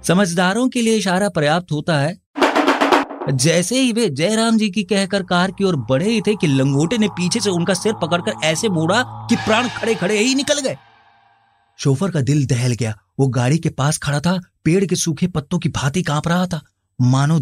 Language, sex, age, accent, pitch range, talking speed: Hindi, male, 30-49, native, 140-190 Hz, 195 wpm